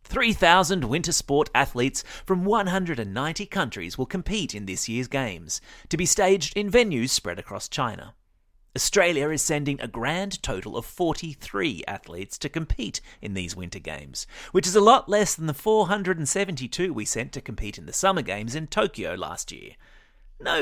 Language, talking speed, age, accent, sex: English, 165 wpm, 30-49, Australian, male